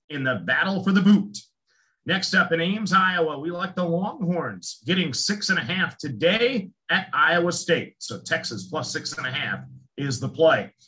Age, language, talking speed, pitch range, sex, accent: 50-69, English, 190 wpm, 160-195 Hz, male, American